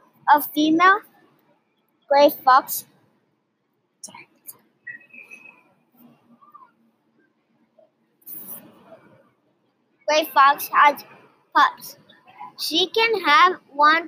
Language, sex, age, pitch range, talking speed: English, male, 20-39, 275-330 Hz, 50 wpm